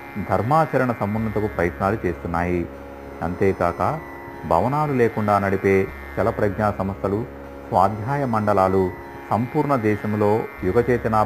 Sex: male